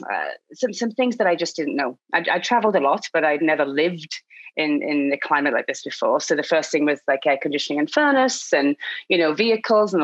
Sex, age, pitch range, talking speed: female, 30-49, 145-190 Hz, 235 wpm